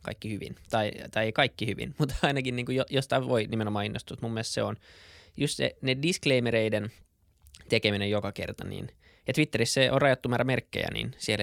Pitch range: 100-115 Hz